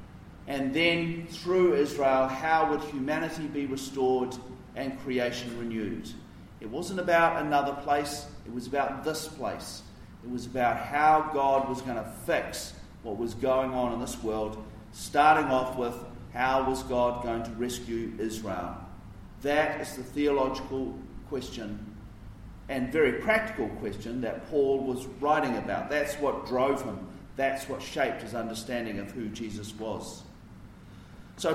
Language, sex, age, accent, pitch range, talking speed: English, male, 40-59, Australian, 125-170 Hz, 145 wpm